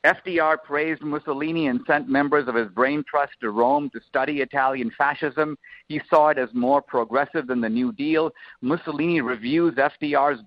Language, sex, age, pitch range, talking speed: English, male, 50-69, 145-185 Hz, 165 wpm